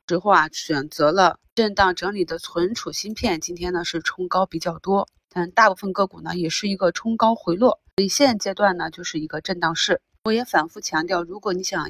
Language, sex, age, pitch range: Chinese, female, 20-39, 165-195 Hz